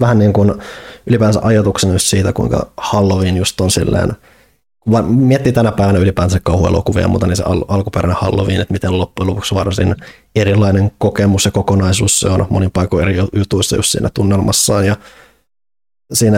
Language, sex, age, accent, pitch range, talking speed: Finnish, male, 20-39, native, 95-105 Hz, 160 wpm